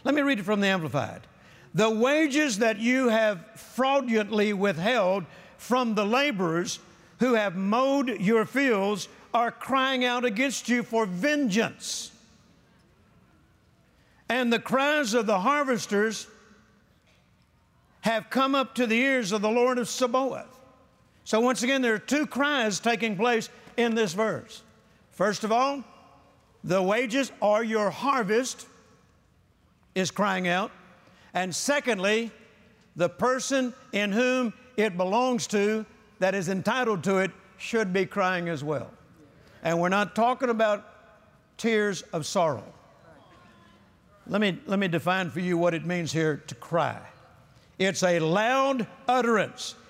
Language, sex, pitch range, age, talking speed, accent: English, male, 190-245 Hz, 60-79, 135 wpm, American